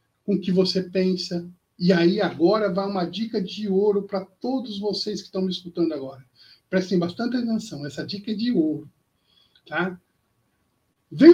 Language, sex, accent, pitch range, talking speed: Portuguese, male, Brazilian, 170-235 Hz, 160 wpm